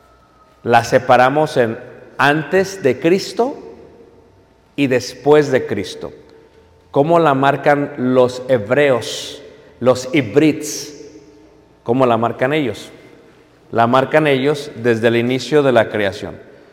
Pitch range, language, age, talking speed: 125-155 Hz, Spanish, 50-69, 110 wpm